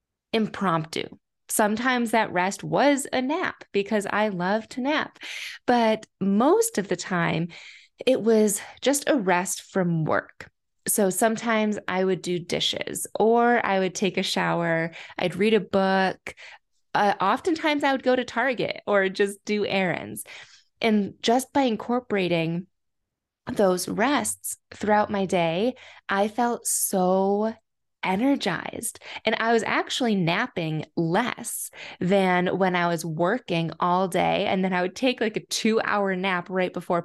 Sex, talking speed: female, 145 wpm